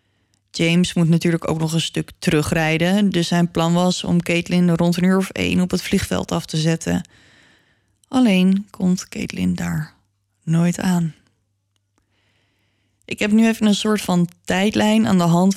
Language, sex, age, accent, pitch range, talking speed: Dutch, female, 20-39, Dutch, 150-195 Hz, 160 wpm